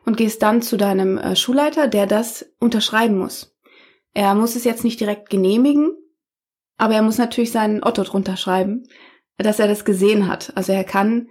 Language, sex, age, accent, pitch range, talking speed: German, female, 20-39, German, 195-235 Hz, 175 wpm